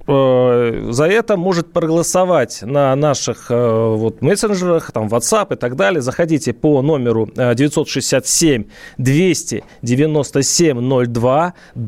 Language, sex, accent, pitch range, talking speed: Russian, male, native, 125-165 Hz, 85 wpm